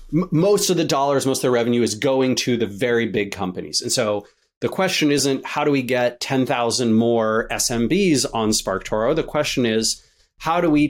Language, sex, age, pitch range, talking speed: English, male, 30-49, 110-145 Hz, 200 wpm